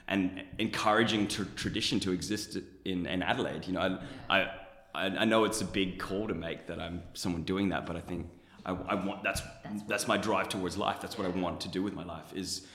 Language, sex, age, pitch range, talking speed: English, male, 20-39, 90-105 Hz, 225 wpm